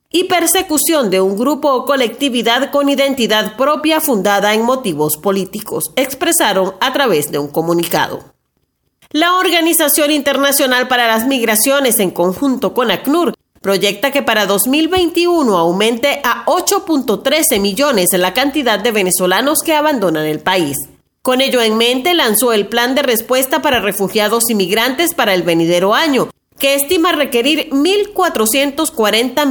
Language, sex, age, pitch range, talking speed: Spanish, female, 40-59, 200-290 Hz, 135 wpm